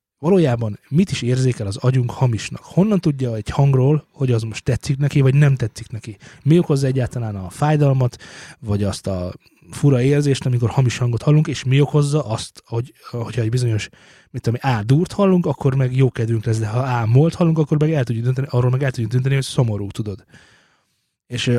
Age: 20-39